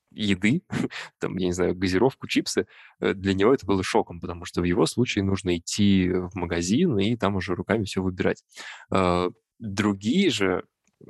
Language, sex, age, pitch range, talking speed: Russian, male, 20-39, 95-110 Hz, 155 wpm